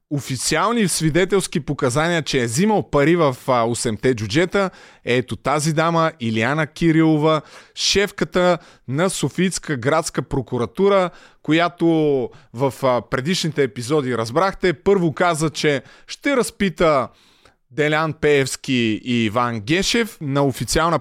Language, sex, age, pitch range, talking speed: Bulgarian, male, 30-49, 130-180 Hz, 105 wpm